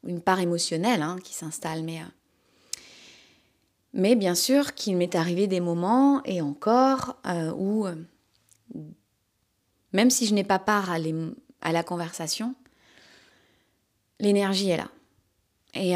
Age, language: 20-39, French